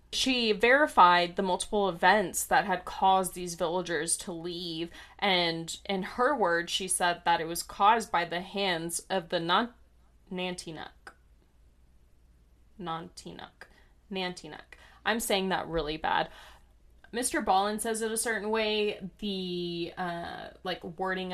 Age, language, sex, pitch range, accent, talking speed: 20-39, English, female, 170-200 Hz, American, 130 wpm